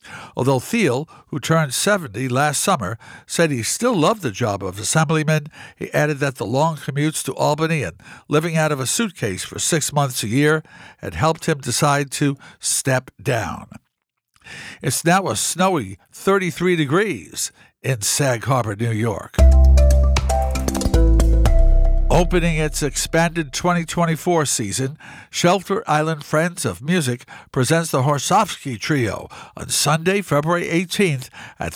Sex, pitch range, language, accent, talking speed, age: male, 130-170 Hz, English, American, 135 wpm, 60-79